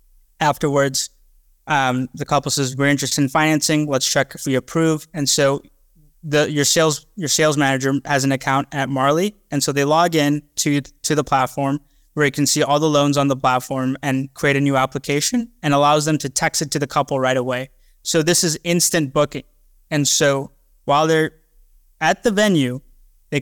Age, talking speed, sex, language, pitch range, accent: 20-39, 190 wpm, male, English, 135-155 Hz, American